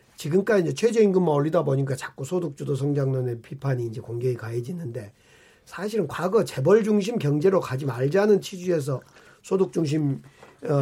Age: 40-59